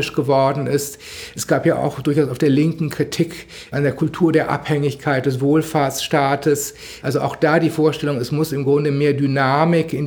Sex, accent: male, German